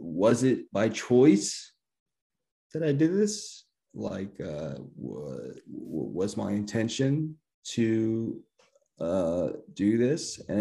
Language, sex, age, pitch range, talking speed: English, male, 30-49, 105-125 Hz, 115 wpm